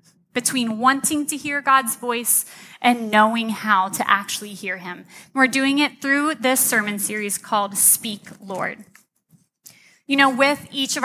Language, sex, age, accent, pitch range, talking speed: English, female, 20-39, American, 220-270 Hz, 150 wpm